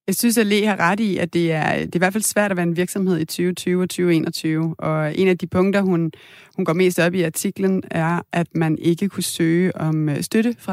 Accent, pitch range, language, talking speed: native, 160-190 Hz, Danish, 245 wpm